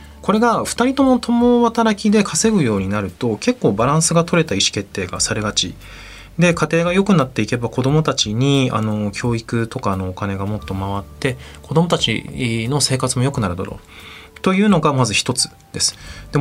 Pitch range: 105-165 Hz